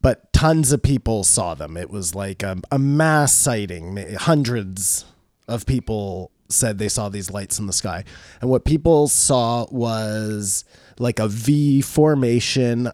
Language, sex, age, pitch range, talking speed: English, male, 30-49, 110-140 Hz, 155 wpm